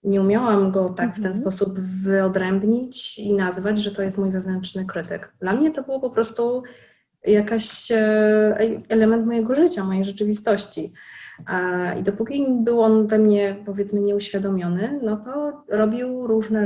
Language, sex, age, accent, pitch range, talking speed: Polish, female, 20-39, native, 190-215 Hz, 145 wpm